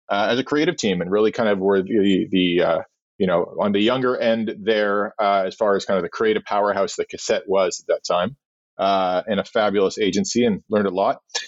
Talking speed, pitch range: 230 wpm, 105-145 Hz